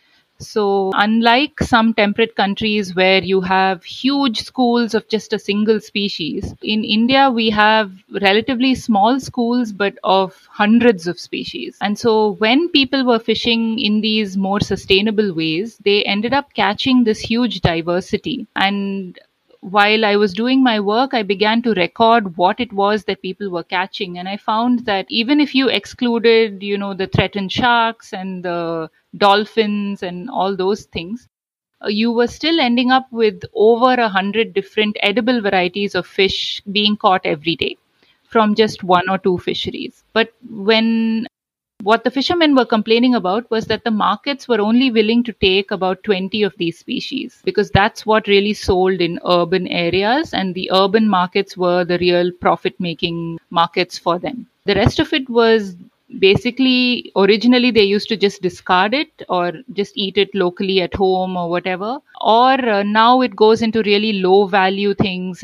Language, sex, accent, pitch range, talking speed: English, female, Indian, 190-230 Hz, 165 wpm